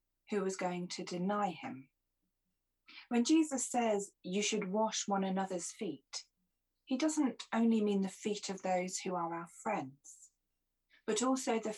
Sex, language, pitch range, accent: female, English, 160-215 Hz, British